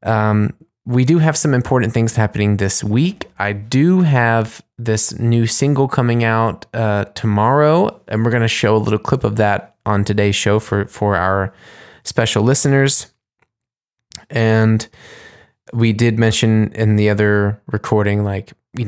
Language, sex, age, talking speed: English, male, 20-39, 155 wpm